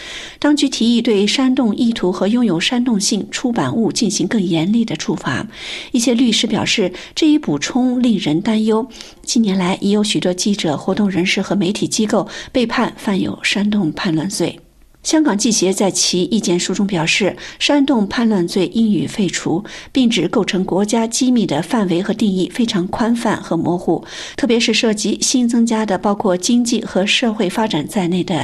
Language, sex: Chinese, female